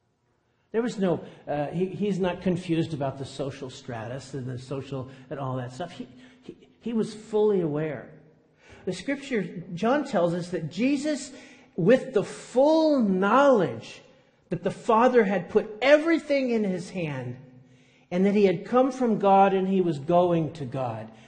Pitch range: 120-195 Hz